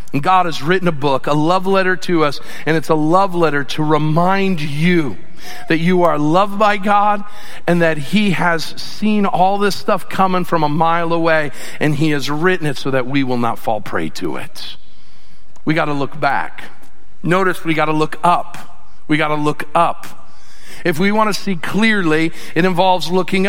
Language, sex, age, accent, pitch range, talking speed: English, male, 50-69, American, 170-215 Hz, 185 wpm